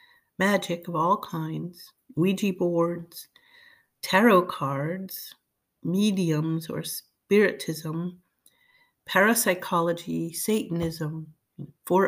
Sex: female